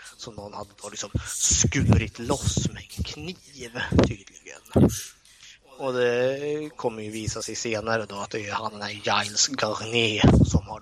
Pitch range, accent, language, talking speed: 105-130 Hz, native, Swedish, 150 wpm